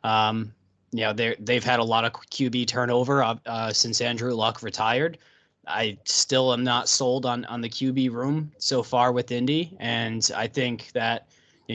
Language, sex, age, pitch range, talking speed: English, male, 20-39, 110-135 Hz, 185 wpm